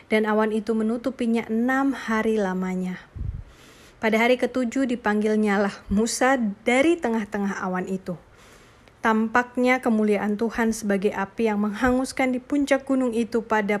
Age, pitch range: 20-39, 205-245 Hz